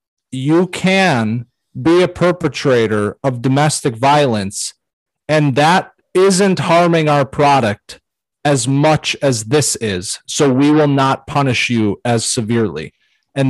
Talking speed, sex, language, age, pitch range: 125 wpm, male, English, 30-49, 125-160 Hz